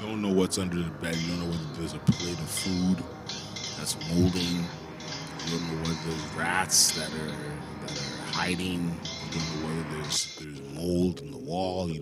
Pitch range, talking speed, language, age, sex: 80-90 Hz, 195 wpm, English, 20-39, male